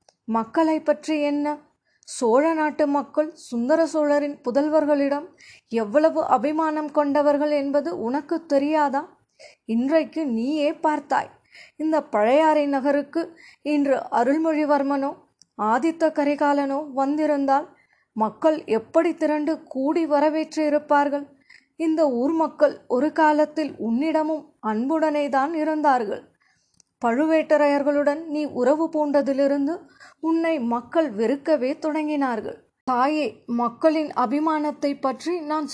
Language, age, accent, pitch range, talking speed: Tamil, 20-39, native, 275-310 Hz, 90 wpm